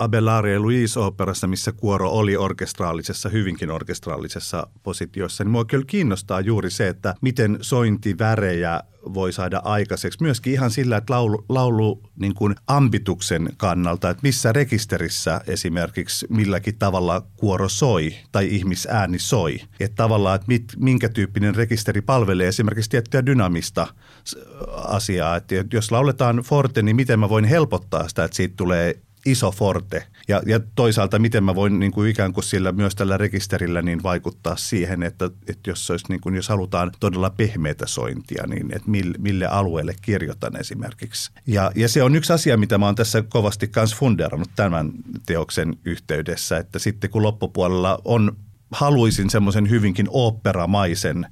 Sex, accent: male, native